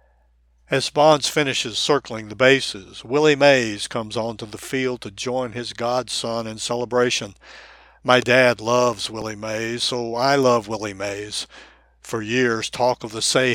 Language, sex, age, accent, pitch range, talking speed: English, male, 60-79, American, 115-130 Hz, 150 wpm